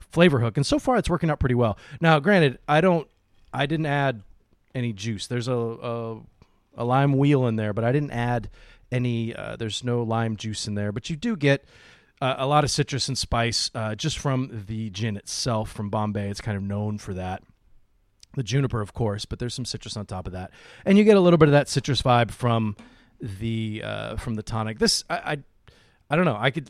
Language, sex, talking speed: English, male, 225 wpm